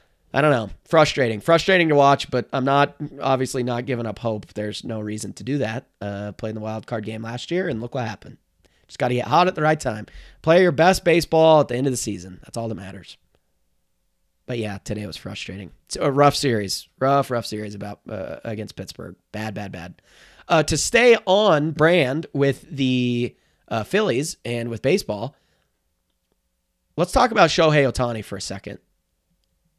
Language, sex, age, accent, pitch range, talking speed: English, male, 30-49, American, 105-160 Hz, 195 wpm